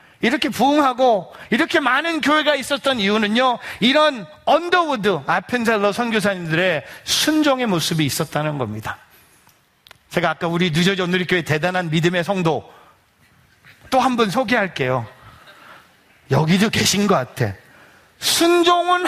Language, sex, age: Korean, male, 40-59